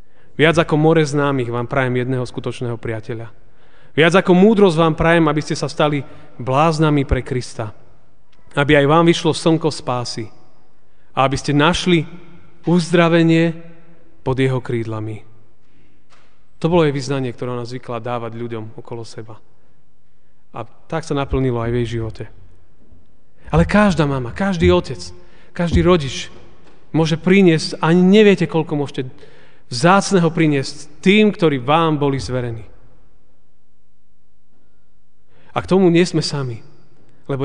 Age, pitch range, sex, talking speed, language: 30-49, 125-165 Hz, male, 130 wpm, Slovak